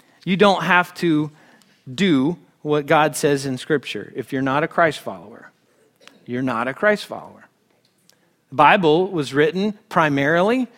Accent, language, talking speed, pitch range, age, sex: American, English, 145 wpm, 150-210 Hz, 40-59, male